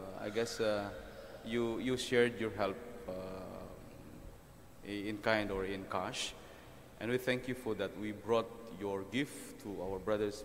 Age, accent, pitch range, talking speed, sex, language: 20-39, Filipino, 95-115 Hz, 155 wpm, male, English